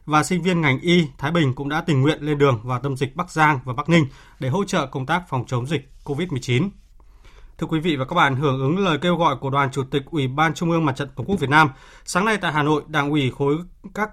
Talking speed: 270 wpm